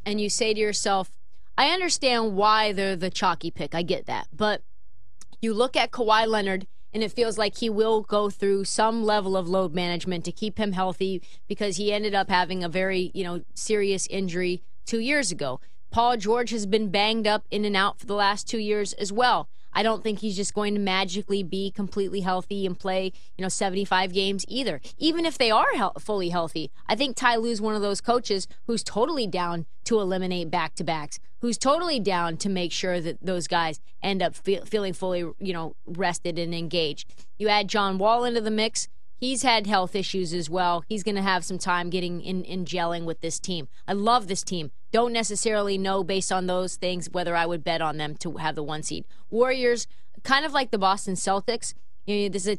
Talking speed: 210 wpm